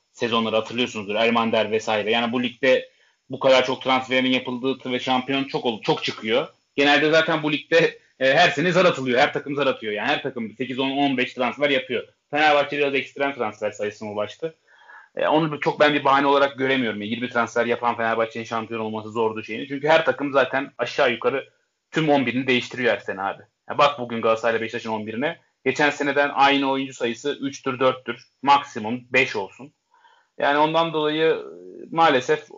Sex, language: male, Turkish